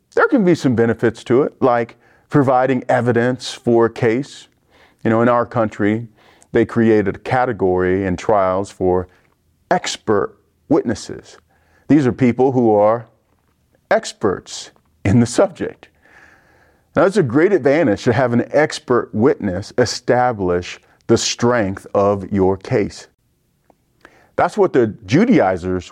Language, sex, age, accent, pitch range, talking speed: English, male, 40-59, American, 100-135 Hz, 130 wpm